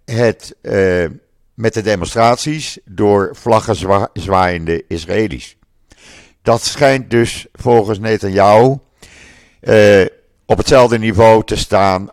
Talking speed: 95 wpm